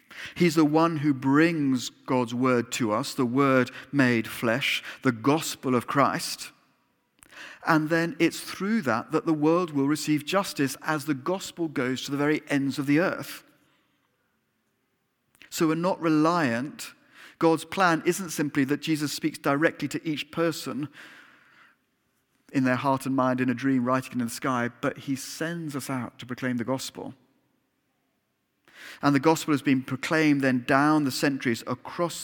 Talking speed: 160 wpm